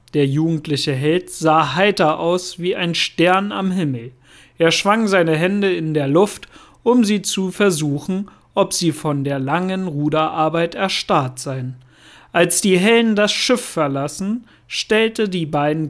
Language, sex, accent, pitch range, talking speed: German, male, German, 145-180 Hz, 145 wpm